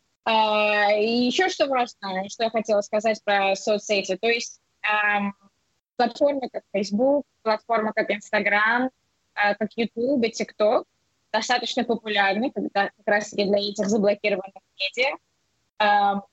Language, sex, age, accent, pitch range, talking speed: Russian, female, 20-39, native, 210-260 Hz, 130 wpm